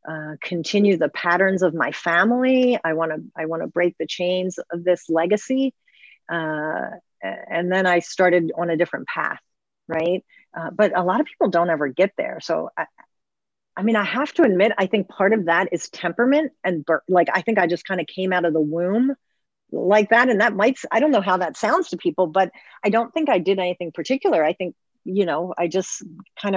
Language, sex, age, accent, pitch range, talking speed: English, female, 40-59, American, 165-210 Hz, 215 wpm